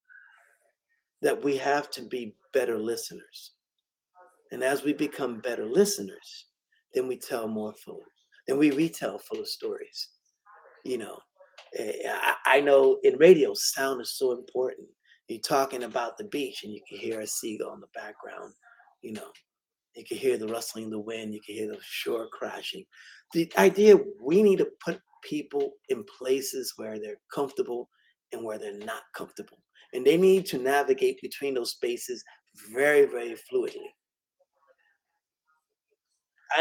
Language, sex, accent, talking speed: English, male, American, 150 wpm